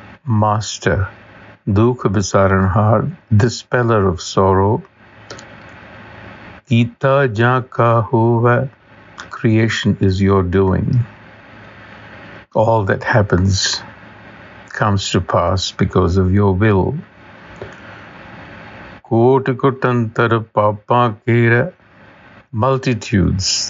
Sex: male